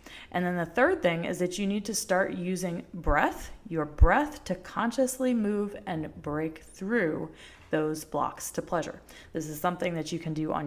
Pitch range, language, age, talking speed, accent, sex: 175-230 Hz, English, 30-49, 185 wpm, American, female